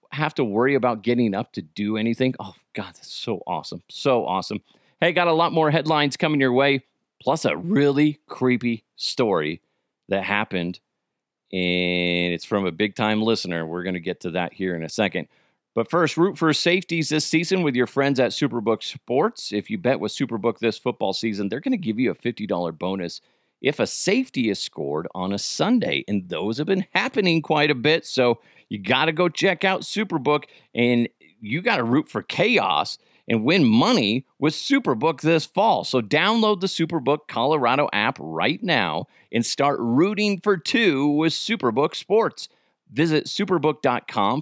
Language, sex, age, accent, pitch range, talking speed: English, male, 40-59, American, 105-165 Hz, 180 wpm